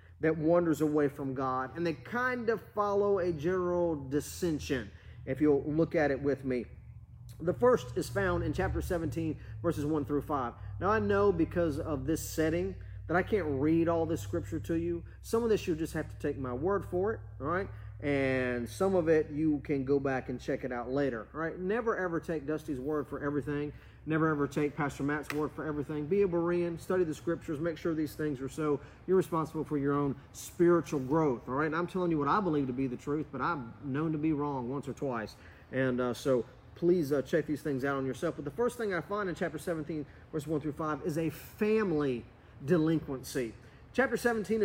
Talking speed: 220 wpm